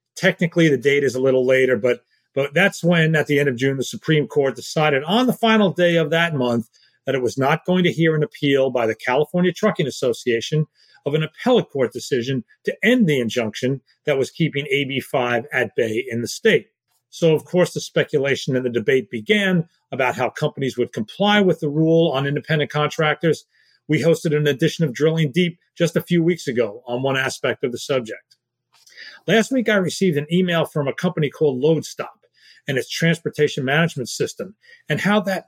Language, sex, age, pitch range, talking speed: English, male, 40-59, 135-175 Hz, 195 wpm